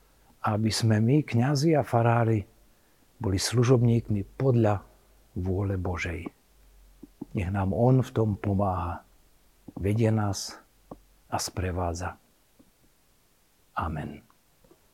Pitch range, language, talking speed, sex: 95-120 Hz, Slovak, 90 wpm, male